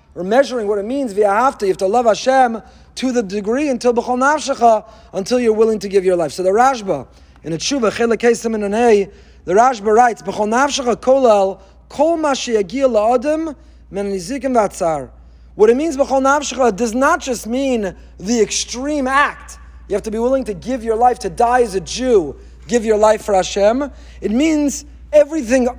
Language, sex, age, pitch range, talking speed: English, male, 30-49, 215-280 Hz, 170 wpm